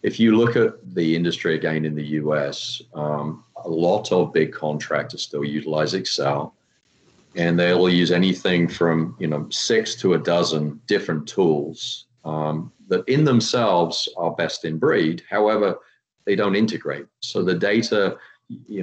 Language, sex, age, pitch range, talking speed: English, male, 40-59, 80-90 Hz, 155 wpm